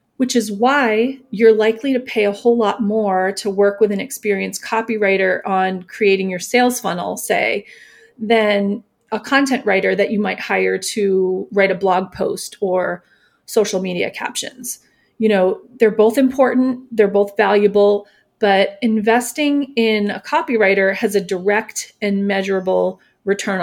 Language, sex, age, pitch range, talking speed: English, female, 30-49, 200-240 Hz, 150 wpm